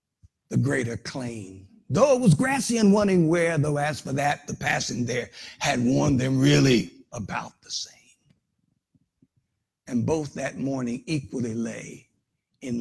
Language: English